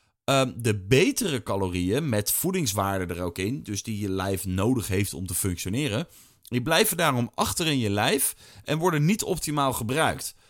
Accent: Dutch